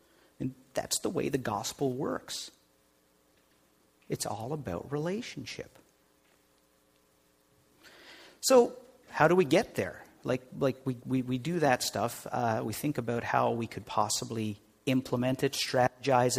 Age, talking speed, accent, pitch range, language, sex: 50-69, 130 wpm, American, 100-150 Hz, English, male